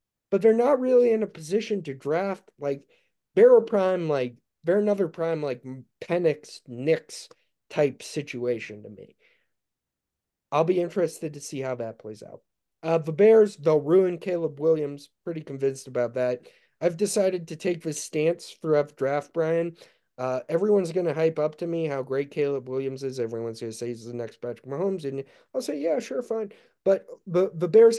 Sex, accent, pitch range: male, American, 120-165 Hz